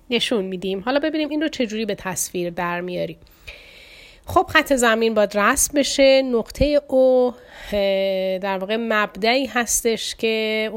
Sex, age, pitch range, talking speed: female, 30-49, 205-275 Hz, 130 wpm